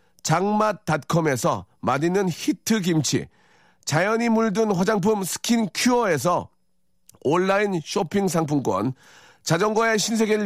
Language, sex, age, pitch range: Korean, male, 40-59, 140-210 Hz